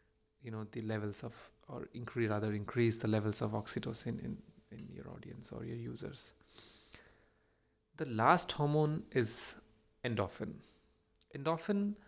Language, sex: English, male